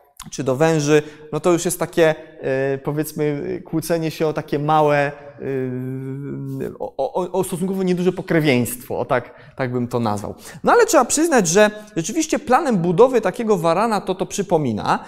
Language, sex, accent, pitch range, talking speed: Polish, male, native, 145-185 Hz, 150 wpm